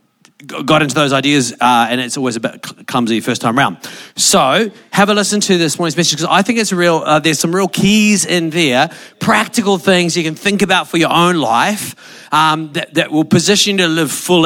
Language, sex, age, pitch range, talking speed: English, male, 40-59, 160-200 Hz, 220 wpm